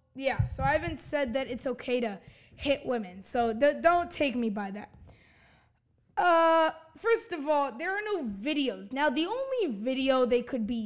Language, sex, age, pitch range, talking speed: English, female, 20-39, 225-295 Hz, 175 wpm